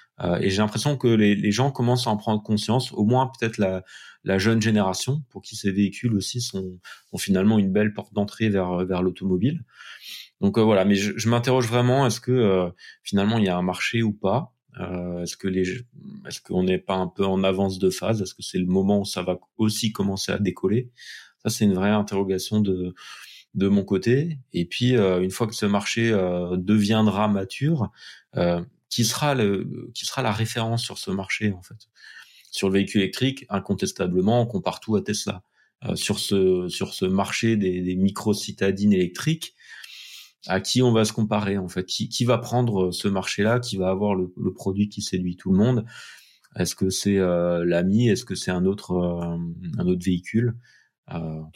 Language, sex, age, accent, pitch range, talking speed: French, male, 30-49, French, 95-115 Hz, 205 wpm